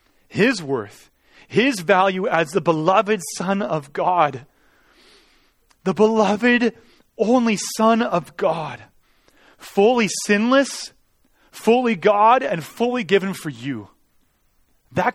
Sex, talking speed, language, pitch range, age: male, 105 wpm, English, 170-225 Hz, 30-49